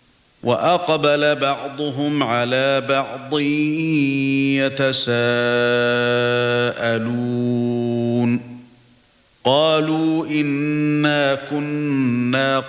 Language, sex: Arabic, male